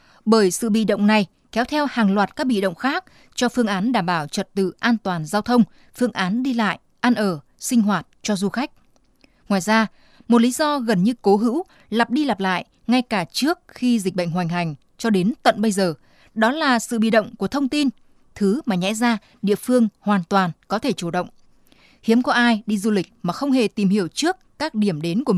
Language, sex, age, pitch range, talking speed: Vietnamese, female, 20-39, 195-240 Hz, 230 wpm